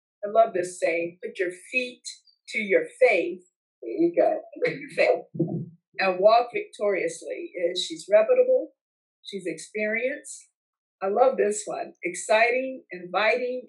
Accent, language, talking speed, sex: American, English, 115 wpm, female